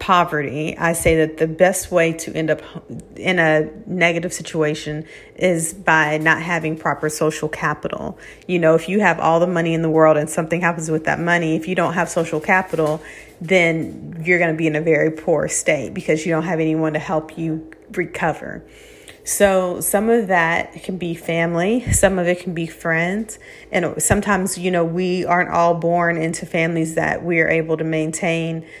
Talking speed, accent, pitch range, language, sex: 190 wpm, American, 160-180 Hz, English, female